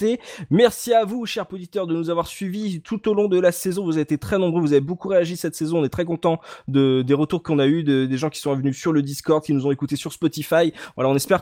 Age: 20-39